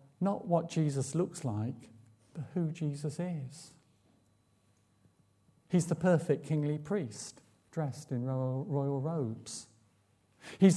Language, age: English, 50-69